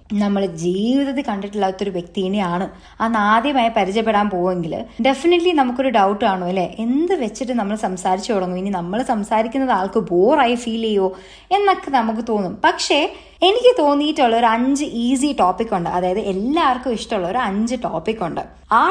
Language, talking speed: Malayalam, 140 wpm